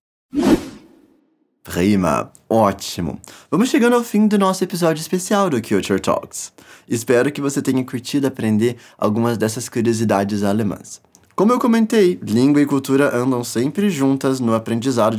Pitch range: 125-190 Hz